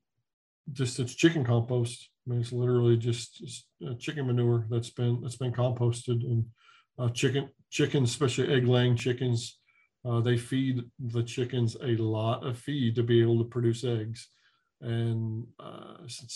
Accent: American